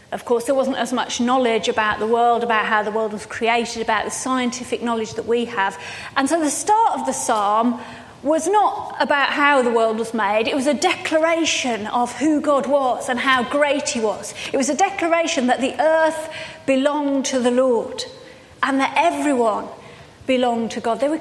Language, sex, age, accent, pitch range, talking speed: English, female, 30-49, British, 240-300 Hz, 200 wpm